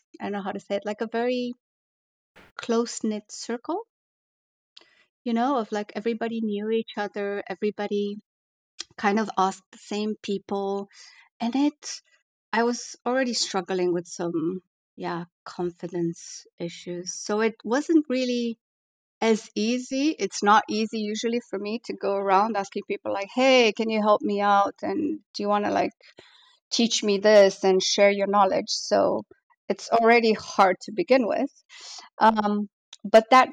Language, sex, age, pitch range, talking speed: English, female, 30-49, 200-245 Hz, 155 wpm